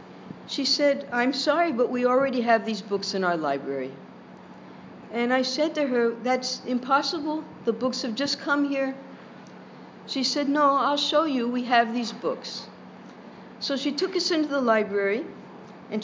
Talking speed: 165 wpm